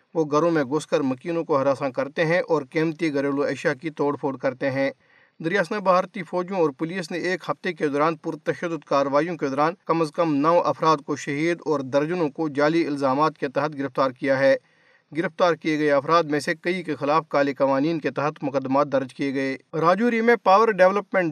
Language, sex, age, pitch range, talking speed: Urdu, male, 50-69, 145-170 Hz, 200 wpm